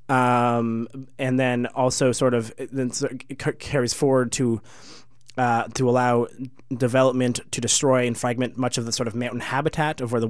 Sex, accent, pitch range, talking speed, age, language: male, American, 120-145 Hz, 170 wpm, 20-39, English